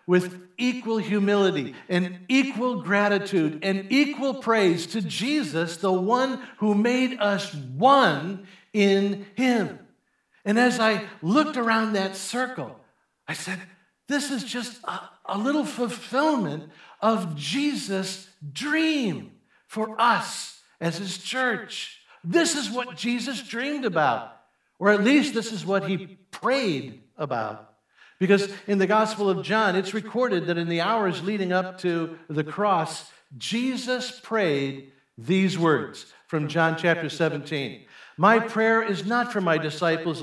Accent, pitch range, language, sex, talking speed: American, 175-235 Hz, English, male, 135 wpm